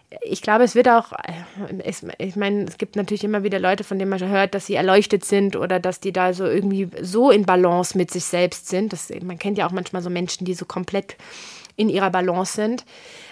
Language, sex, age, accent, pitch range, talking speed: German, female, 20-39, German, 185-225 Hz, 225 wpm